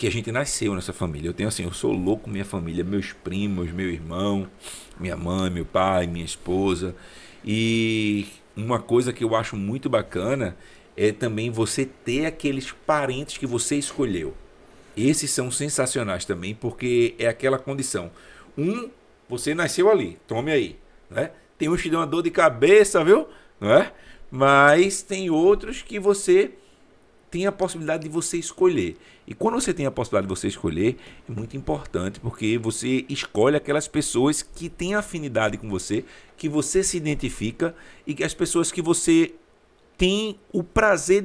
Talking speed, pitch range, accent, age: 165 wpm, 105-160 Hz, Brazilian, 50-69